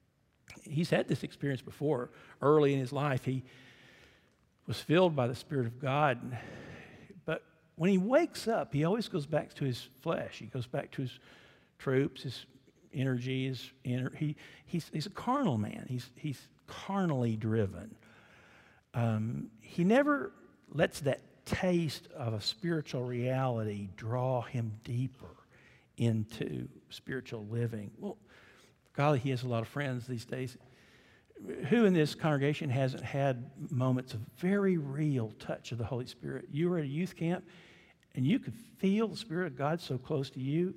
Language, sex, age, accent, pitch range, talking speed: English, male, 60-79, American, 125-160 Hz, 160 wpm